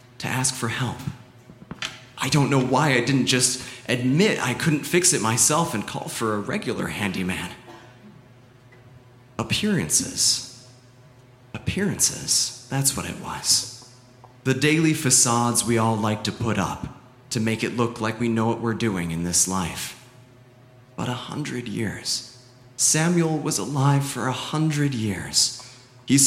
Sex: male